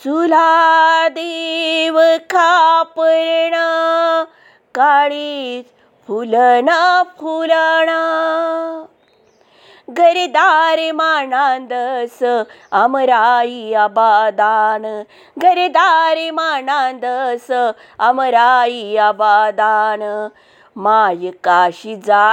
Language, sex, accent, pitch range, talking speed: Marathi, female, native, 215-315 Hz, 40 wpm